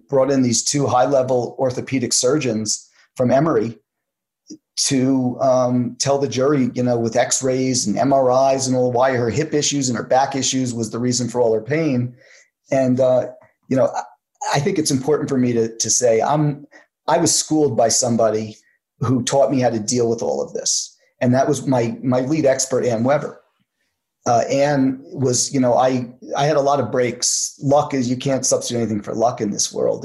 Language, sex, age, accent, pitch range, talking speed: English, male, 30-49, American, 120-135 Hz, 195 wpm